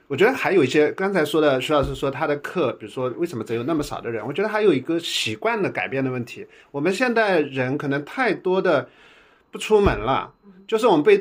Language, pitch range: Chinese, 130-215 Hz